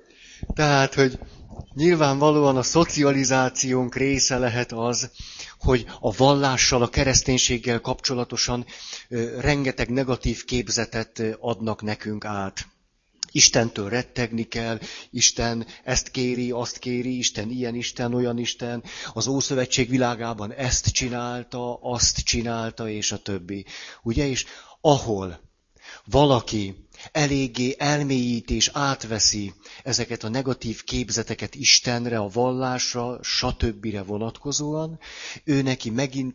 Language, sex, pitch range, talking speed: Hungarian, male, 115-130 Hz, 100 wpm